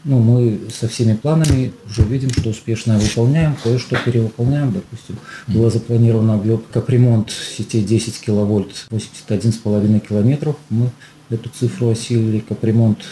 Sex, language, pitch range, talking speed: male, Russian, 105-125 Hz, 125 wpm